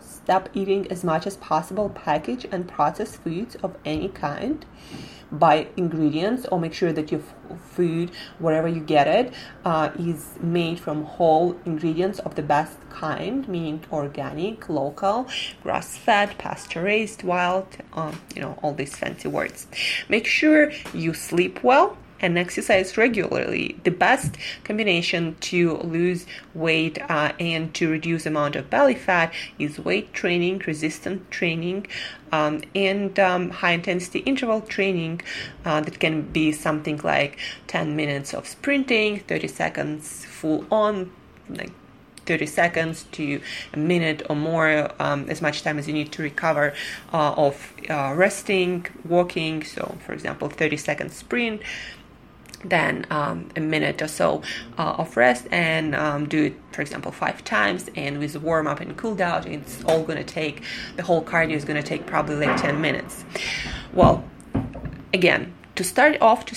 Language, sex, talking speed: English, female, 150 wpm